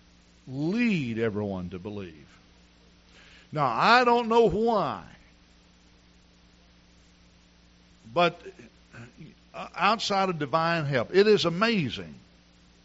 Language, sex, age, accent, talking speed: English, male, 60-79, American, 80 wpm